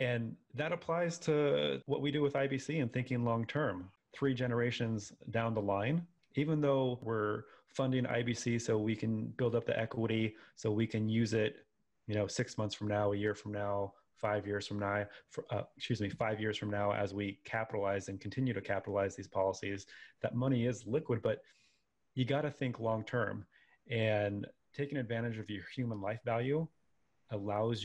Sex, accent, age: male, American, 30-49